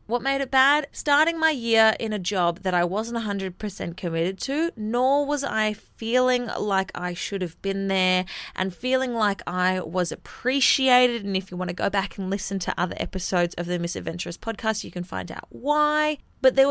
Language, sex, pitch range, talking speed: English, female, 185-250 Hz, 200 wpm